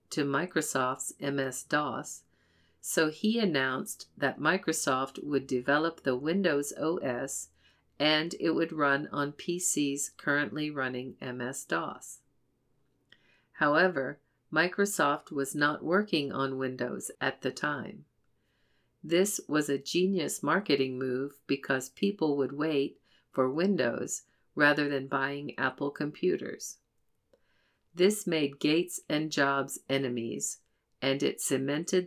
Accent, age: American, 50-69